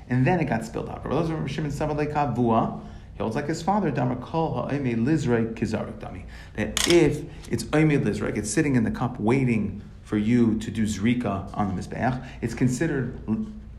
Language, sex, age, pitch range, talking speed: English, male, 40-59, 105-125 Hz, 130 wpm